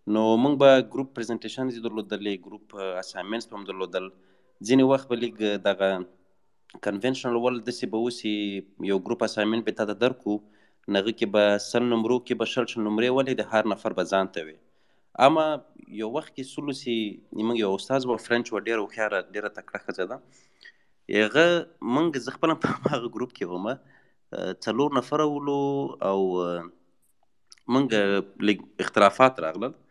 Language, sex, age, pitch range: Urdu, male, 30-49, 100-130 Hz